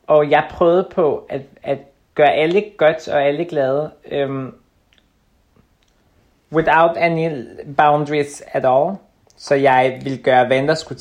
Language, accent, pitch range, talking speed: Danish, native, 130-165 Hz, 135 wpm